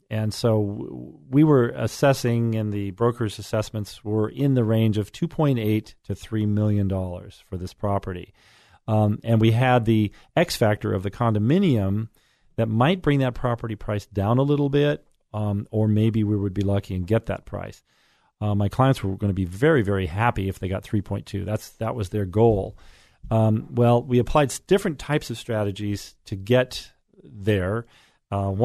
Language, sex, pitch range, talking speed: English, male, 100-120 Hz, 185 wpm